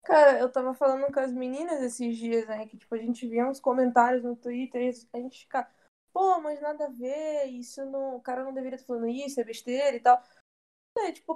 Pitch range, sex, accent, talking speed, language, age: 235-270 Hz, female, Brazilian, 220 wpm, Portuguese, 20-39